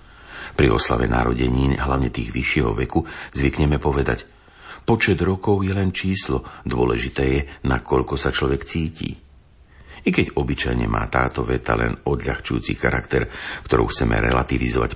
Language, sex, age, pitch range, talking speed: Slovak, male, 50-69, 65-80 Hz, 130 wpm